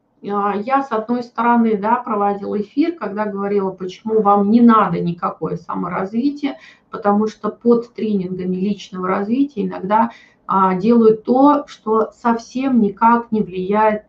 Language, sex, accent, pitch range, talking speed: Russian, female, native, 200-240 Hz, 125 wpm